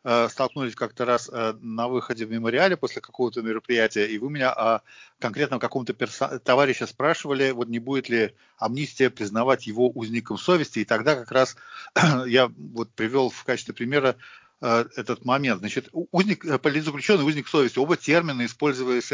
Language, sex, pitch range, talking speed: English, male, 115-140 Hz, 150 wpm